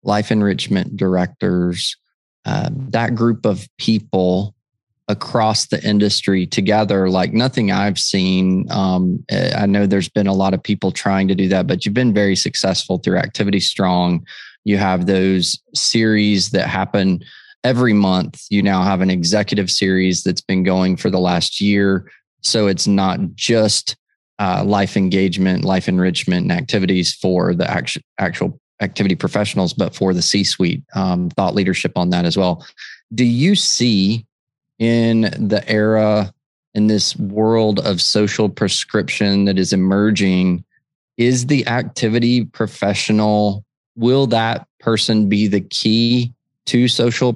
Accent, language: American, English